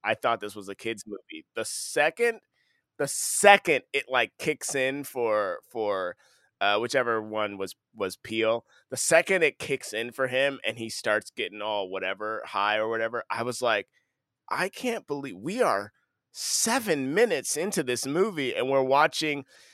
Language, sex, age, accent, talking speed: English, male, 30-49, American, 165 wpm